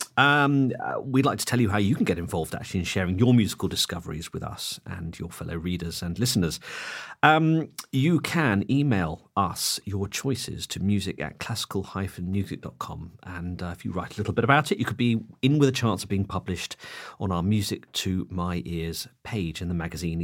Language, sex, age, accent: English, male, 40-59, British